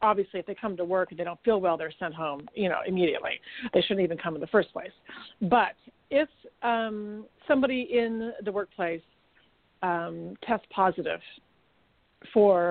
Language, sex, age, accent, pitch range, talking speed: English, female, 40-59, American, 180-225 Hz, 170 wpm